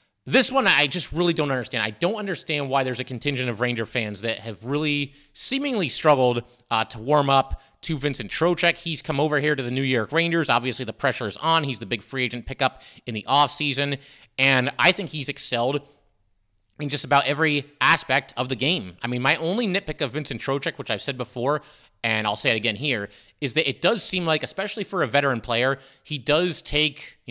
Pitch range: 120-150 Hz